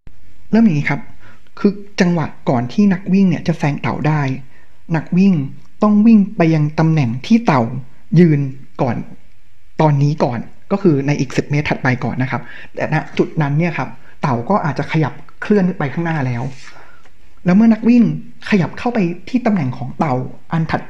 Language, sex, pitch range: Thai, male, 145-200 Hz